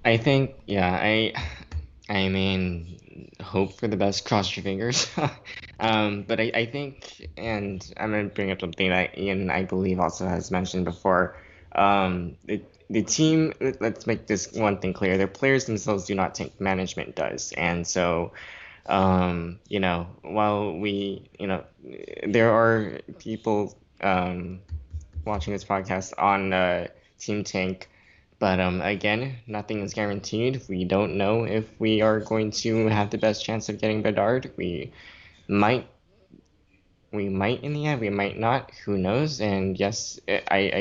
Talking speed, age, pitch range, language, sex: 160 wpm, 10-29, 90-110 Hz, English, male